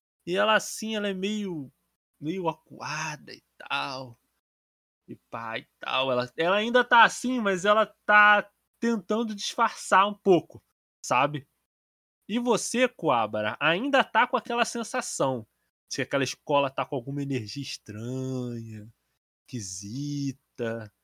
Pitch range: 135-220 Hz